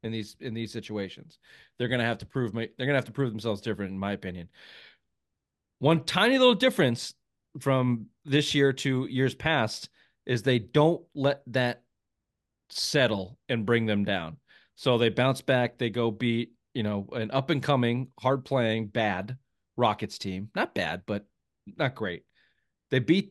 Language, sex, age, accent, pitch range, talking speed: English, male, 40-59, American, 105-140 Hz, 170 wpm